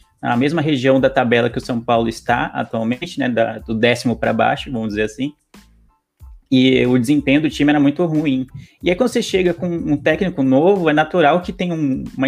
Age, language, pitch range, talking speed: 20-39, Portuguese, 125-160 Hz, 210 wpm